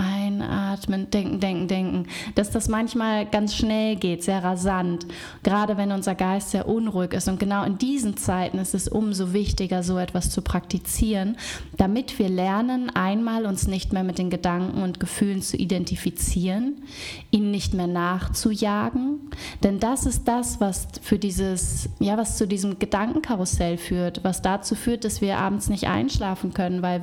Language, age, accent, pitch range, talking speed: German, 20-39, German, 185-220 Hz, 160 wpm